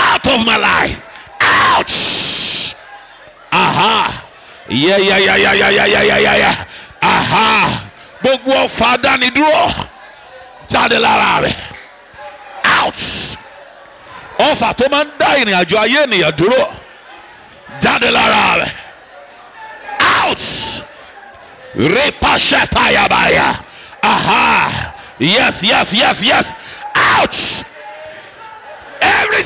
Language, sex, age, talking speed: English, male, 50-69, 100 wpm